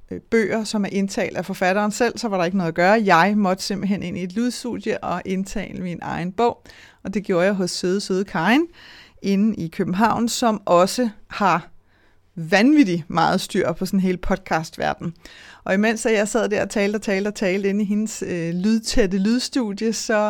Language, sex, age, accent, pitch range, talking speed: Danish, female, 30-49, native, 180-210 Hz, 190 wpm